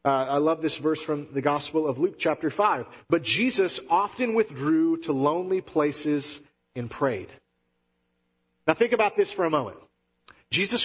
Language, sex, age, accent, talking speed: English, male, 40-59, American, 160 wpm